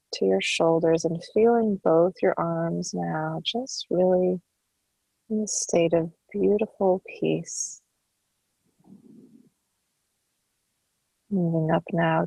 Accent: American